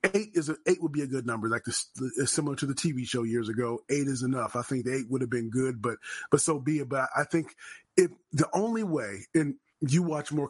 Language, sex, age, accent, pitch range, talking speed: English, male, 30-49, American, 130-165 Hz, 265 wpm